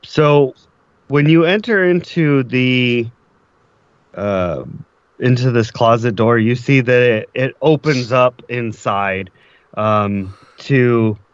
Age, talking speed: 30-49, 110 wpm